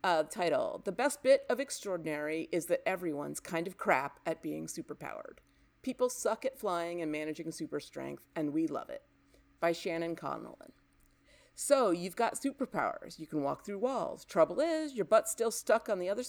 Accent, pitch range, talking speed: American, 170-250 Hz, 180 wpm